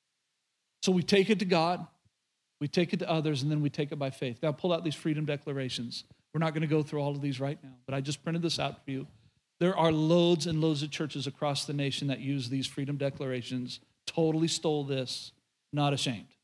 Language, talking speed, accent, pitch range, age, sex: English, 230 wpm, American, 135-165 Hz, 50-69, male